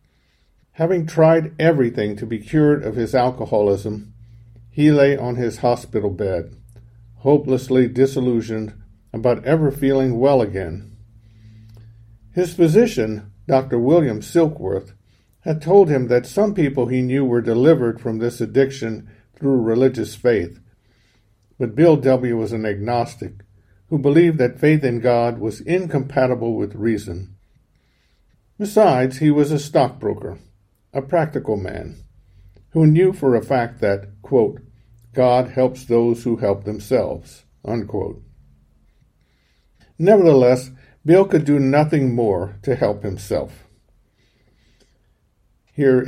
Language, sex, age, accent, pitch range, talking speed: English, male, 50-69, American, 105-135 Hz, 120 wpm